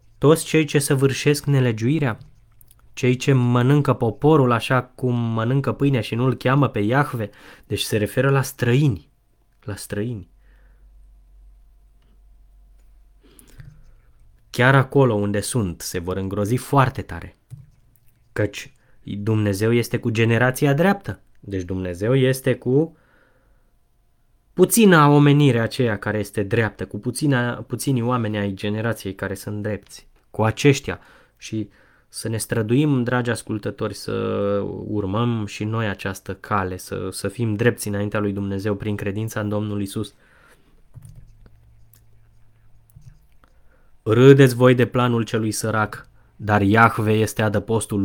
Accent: native